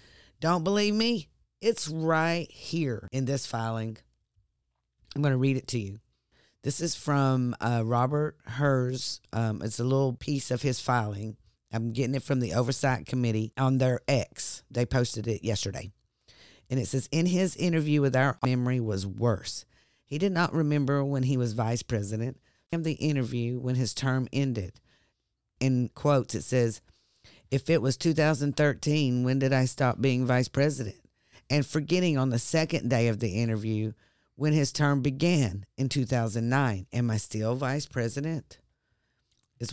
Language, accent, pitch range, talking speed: English, American, 115-145 Hz, 160 wpm